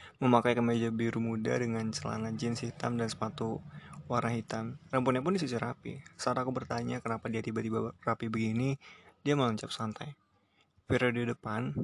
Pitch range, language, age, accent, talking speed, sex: 115-130 Hz, Indonesian, 20-39, native, 145 wpm, male